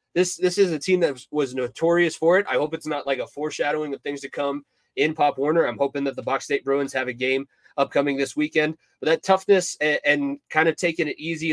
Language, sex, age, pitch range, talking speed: English, male, 20-39, 130-160 Hz, 245 wpm